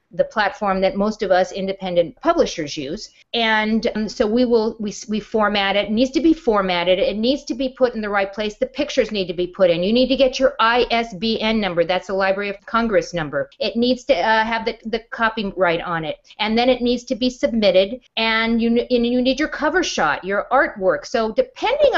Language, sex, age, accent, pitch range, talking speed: English, female, 50-69, American, 190-255 Hz, 220 wpm